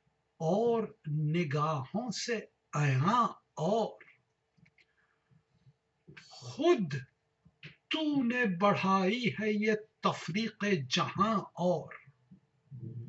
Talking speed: 65 wpm